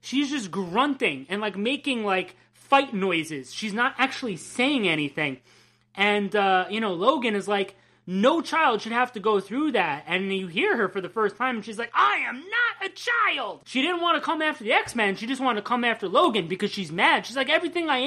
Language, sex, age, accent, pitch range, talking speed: English, male, 30-49, American, 190-265 Hz, 225 wpm